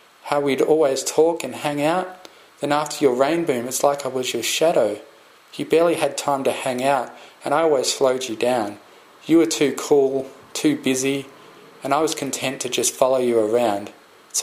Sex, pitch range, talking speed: male, 120-160 Hz, 195 wpm